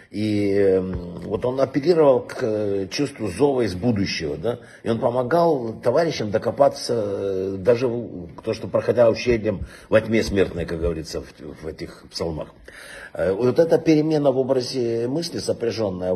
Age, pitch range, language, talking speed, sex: 60-79, 105-150 Hz, Russian, 135 wpm, male